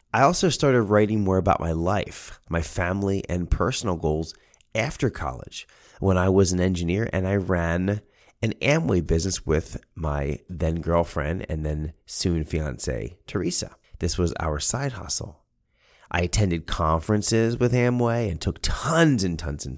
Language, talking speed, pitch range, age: English, 155 wpm, 80-105 Hz, 30-49